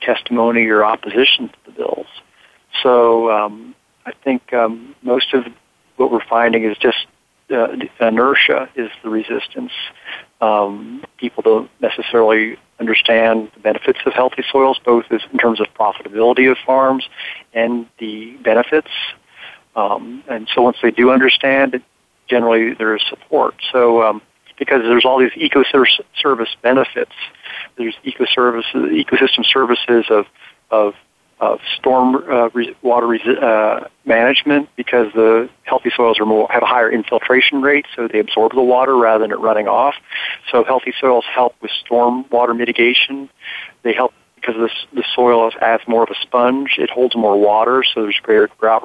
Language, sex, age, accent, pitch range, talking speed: English, male, 50-69, American, 110-130 Hz, 150 wpm